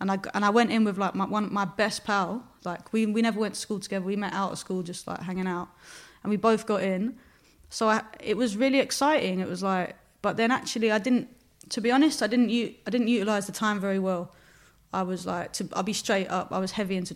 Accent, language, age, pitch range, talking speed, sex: British, English, 20-39, 185-225 Hz, 255 wpm, female